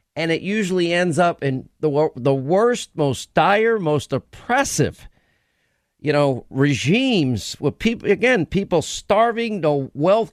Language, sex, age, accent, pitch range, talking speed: English, male, 50-69, American, 140-200 Hz, 135 wpm